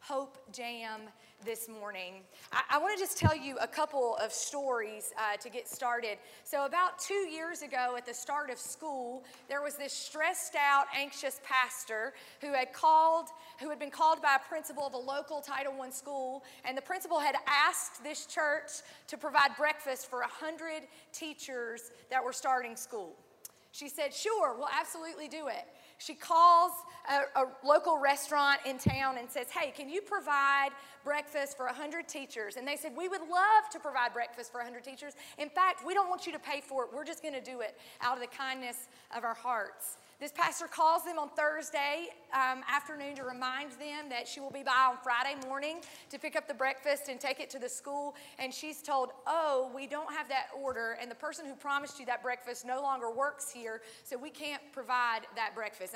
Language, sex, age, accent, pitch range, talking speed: English, female, 30-49, American, 250-305 Hz, 200 wpm